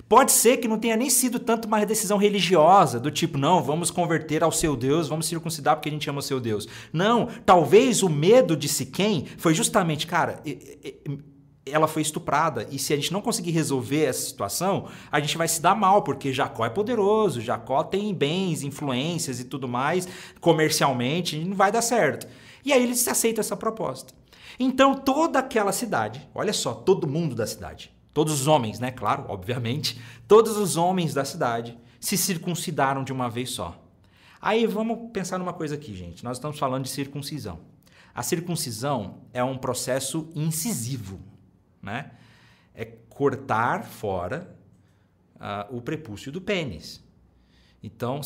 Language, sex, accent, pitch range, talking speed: Portuguese, male, Brazilian, 130-195 Hz, 165 wpm